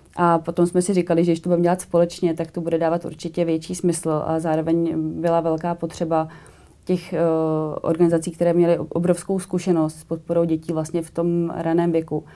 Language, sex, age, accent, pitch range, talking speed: Czech, female, 30-49, native, 160-175 Hz, 185 wpm